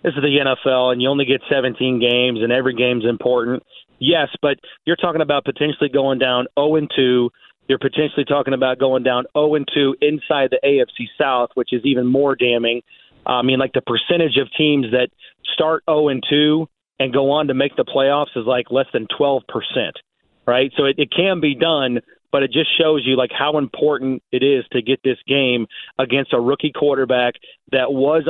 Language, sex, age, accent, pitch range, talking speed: English, male, 40-59, American, 125-150 Hz, 190 wpm